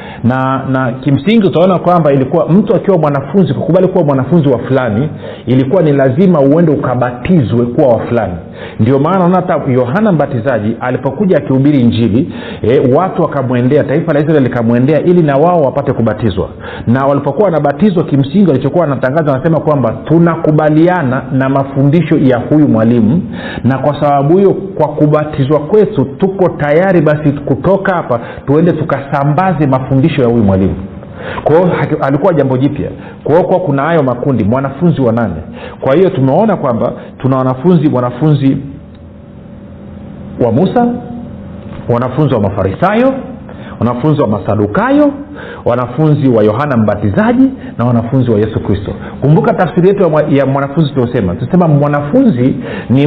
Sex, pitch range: male, 125-170 Hz